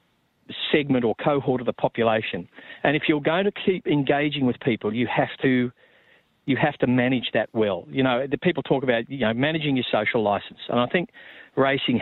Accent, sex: Australian, male